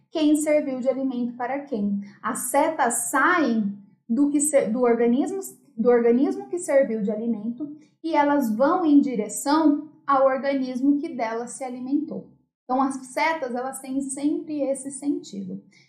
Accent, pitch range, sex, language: Brazilian, 230-290 Hz, female, Portuguese